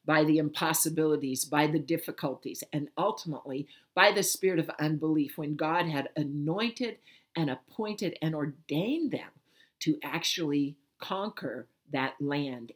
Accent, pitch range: American, 140-170 Hz